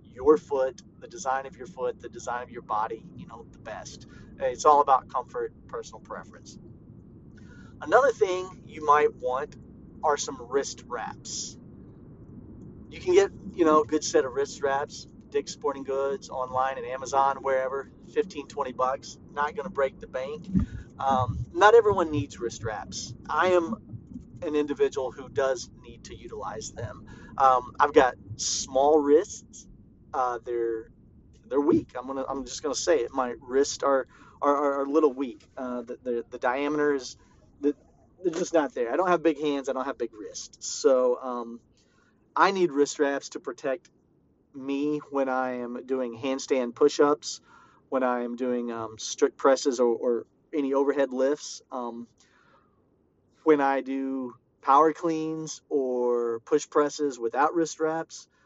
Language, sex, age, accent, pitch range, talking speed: English, male, 40-59, American, 125-155 Hz, 160 wpm